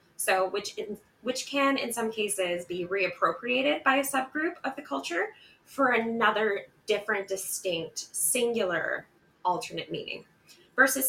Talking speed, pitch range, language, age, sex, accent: 125 wpm, 185-240 Hz, English, 20-39, female, American